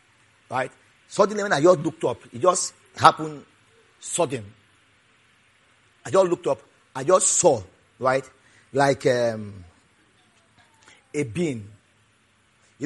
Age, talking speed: 40-59, 110 wpm